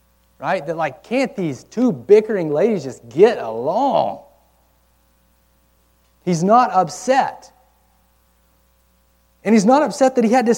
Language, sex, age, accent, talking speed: English, male, 30-49, American, 125 wpm